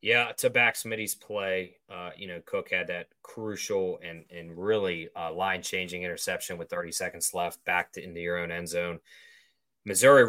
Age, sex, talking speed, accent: 20-39, male, 170 wpm, American